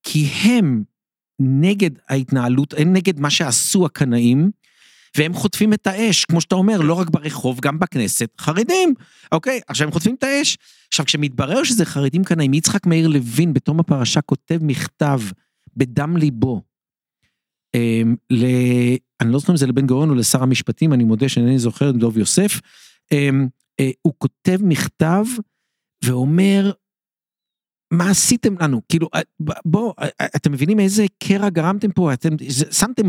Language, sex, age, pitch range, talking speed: Hebrew, male, 50-69, 140-195 Hz, 140 wpm